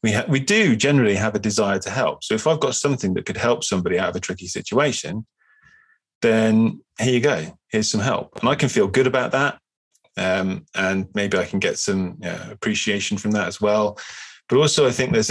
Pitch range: 105-140 Hz